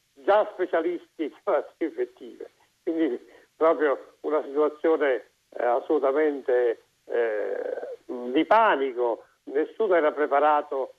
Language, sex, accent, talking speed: Italian, male, native, 95 wpm